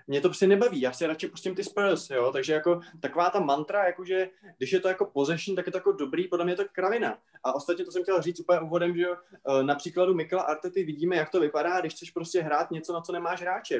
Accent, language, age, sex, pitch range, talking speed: native, Czech, 20-39, male, 145-180 Hz, 255 wpm